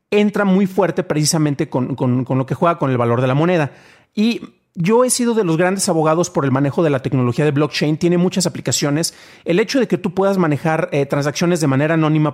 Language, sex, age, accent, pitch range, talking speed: Spanish, male, 40-59, Mexican, 150-185 Hz, 225 wpm